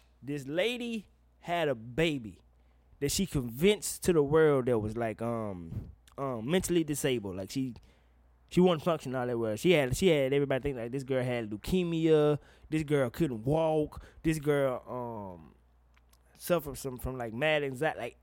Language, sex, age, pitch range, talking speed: English, male, 20-39, 115-170 Hz, 170 wpm